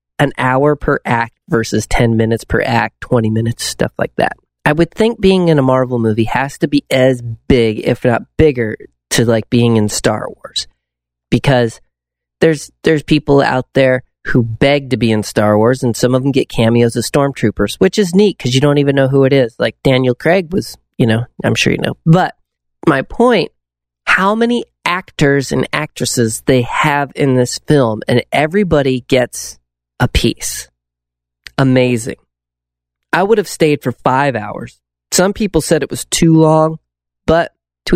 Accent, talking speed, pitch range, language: American, 180 wpm, 110-150 Hz, English